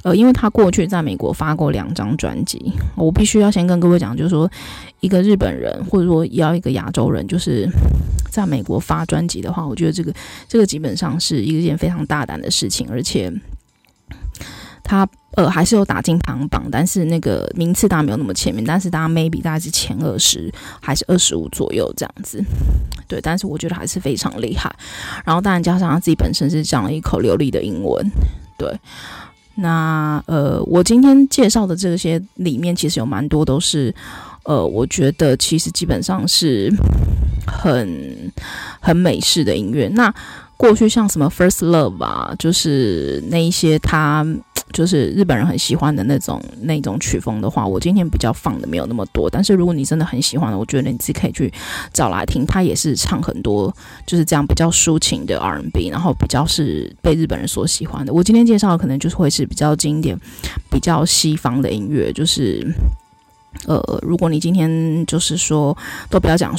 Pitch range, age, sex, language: 145-180 Hz, 20-39, female, Chinese